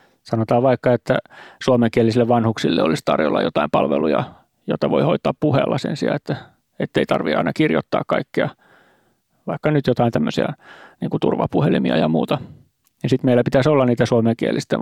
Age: 30-49